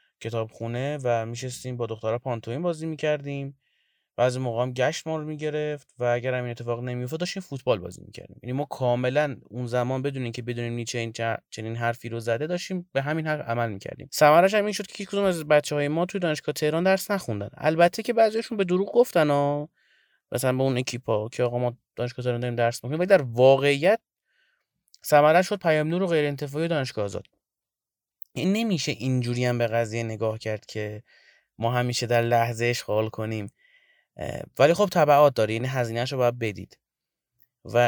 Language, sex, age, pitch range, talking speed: Persian, male, 30-49, 115-155 Hz, 175 wpm